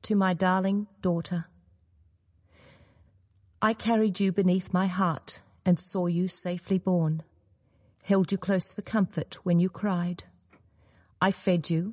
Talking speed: 130 wpm